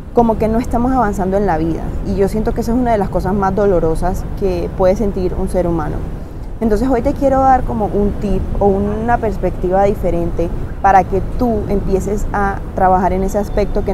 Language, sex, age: Spanish, female, 20-39